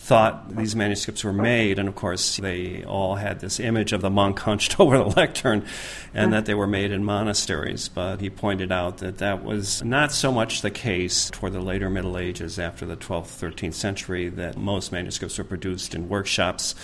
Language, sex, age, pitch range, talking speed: English, male, 40-59, 95-115 Hz, 200 wpm